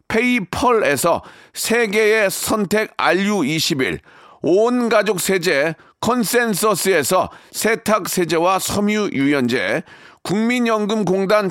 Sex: male